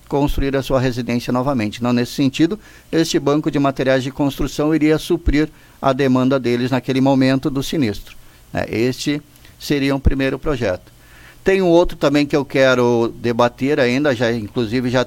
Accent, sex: Brazilian, male